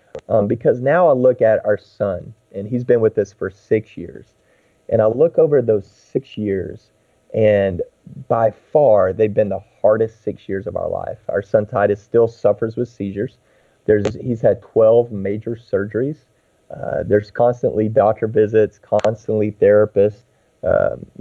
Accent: American